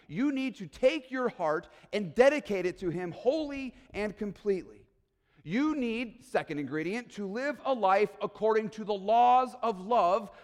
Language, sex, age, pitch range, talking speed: English, male, 40-59, 170-240 Hz, 160 wpm